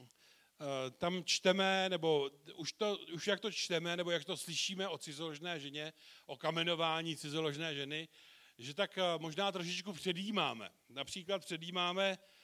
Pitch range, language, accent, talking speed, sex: 150-185 Hz, Czech, native, 130 wpm, male